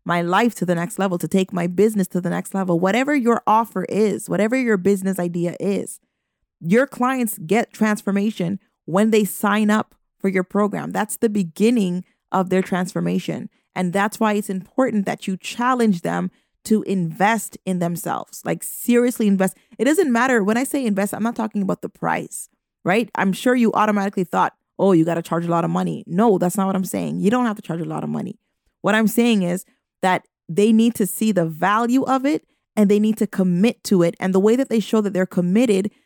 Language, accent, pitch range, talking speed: English, American, 185-220 Hz, 215 wpm